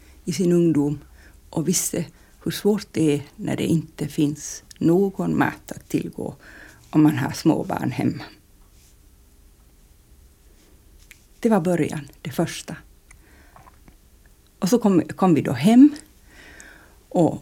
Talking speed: 120 wpm